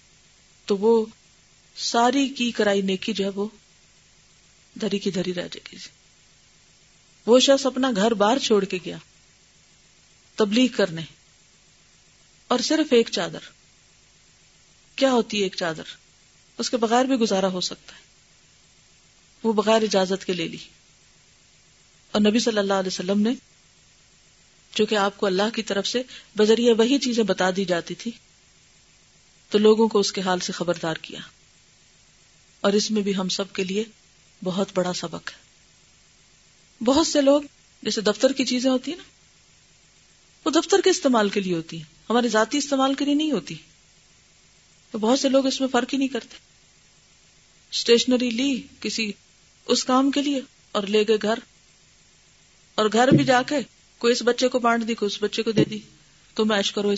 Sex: female